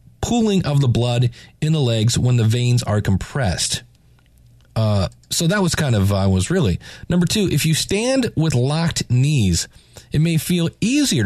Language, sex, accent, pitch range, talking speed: English, male, American, 115-155 Hz, 175 wpm